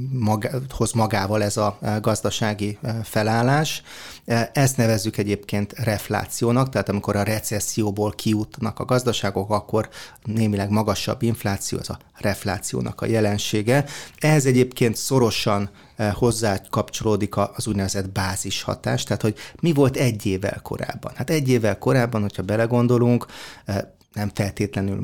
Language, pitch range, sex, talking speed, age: Hungarian, 105-120 Hz, male, 115 wpm, 30-49